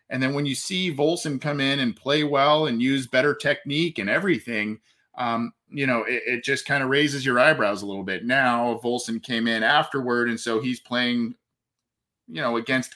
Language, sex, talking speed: English, male, 200 wpm